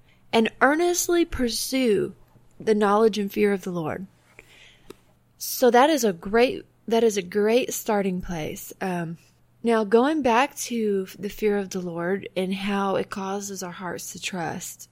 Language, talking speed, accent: English, 155 wpm, American